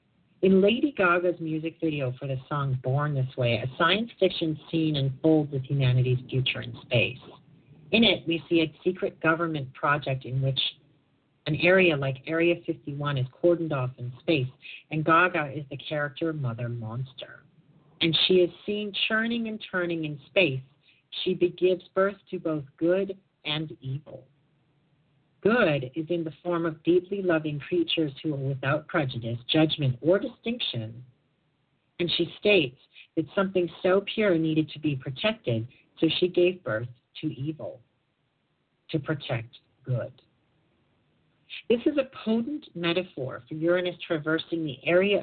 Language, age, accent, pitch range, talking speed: English, 50-69, American, 135-175 Hz, 145 wpm